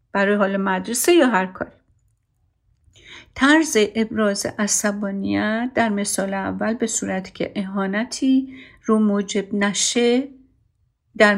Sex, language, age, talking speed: female, Persian, 50-69, 105 wpm